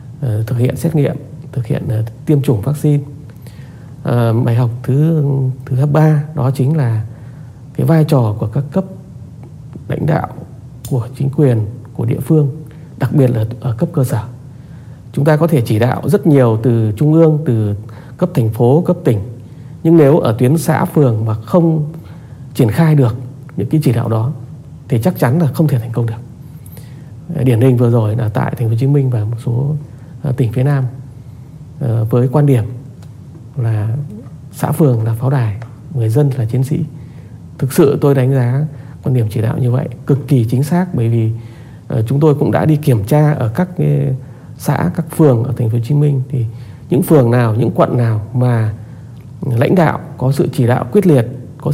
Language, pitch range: Vietnamese, 120-150 Hz